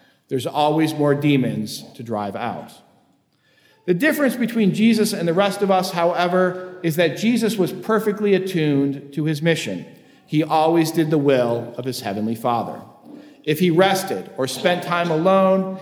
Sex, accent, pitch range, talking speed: male, American, 140-190 Hz, 160 wpm